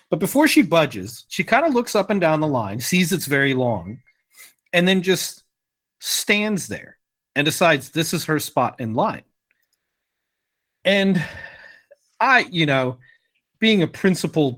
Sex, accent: male, American